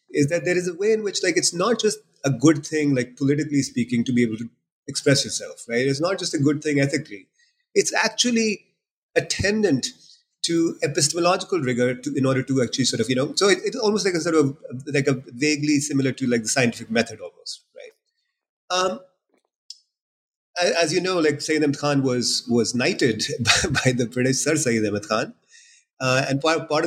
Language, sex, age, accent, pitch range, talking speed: English, male, 30-49, Indian, 120-170 Hz, 200 wpm